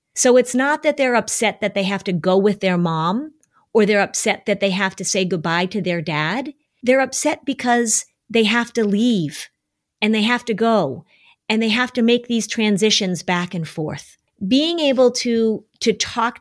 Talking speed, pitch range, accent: 195 wpm, 185-235 Hz, American